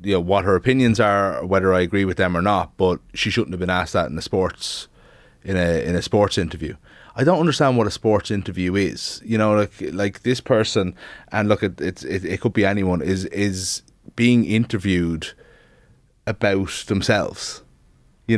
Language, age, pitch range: English, 30-49, 85-110 Hz